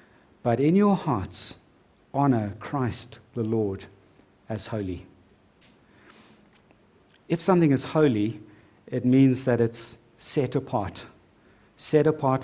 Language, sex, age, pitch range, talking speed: English, male, 60-79, 110-145 Hz, 105 wpm